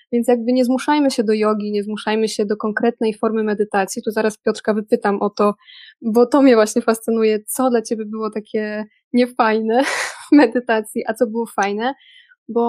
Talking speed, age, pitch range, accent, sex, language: 180 wpm, 20-39, 215-250 Hz, native, female, Polish